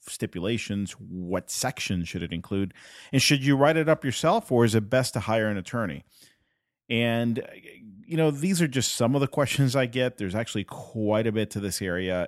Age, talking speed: 40-59, 200 wpm